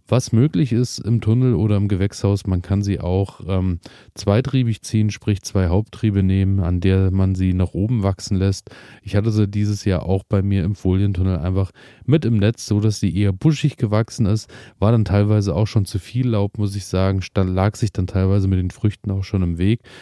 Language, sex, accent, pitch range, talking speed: German, male, German, 95-110 Hz, 205 wpm